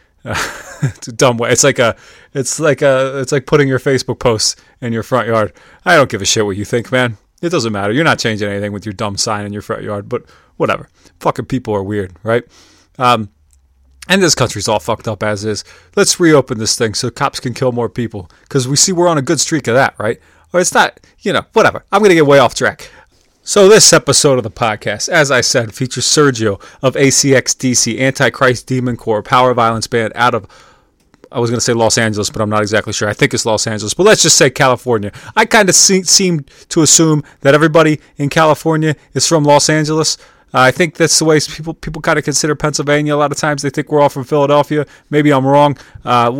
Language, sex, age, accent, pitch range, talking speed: English, male, 30-49, American, 115-150 Hz, 230 wpm